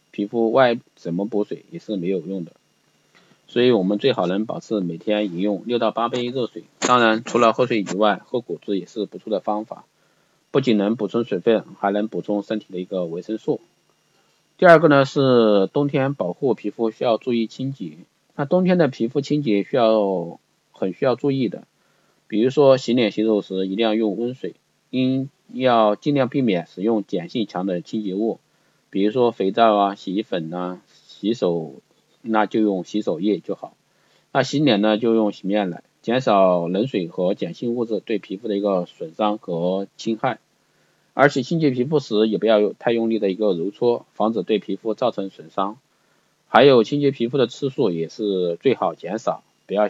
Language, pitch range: Chinese, 100-120 Hz